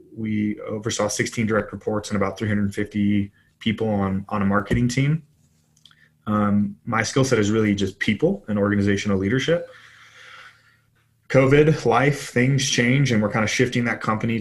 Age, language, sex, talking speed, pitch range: 20-39, English, male, 150 wpm, 100-115 Hz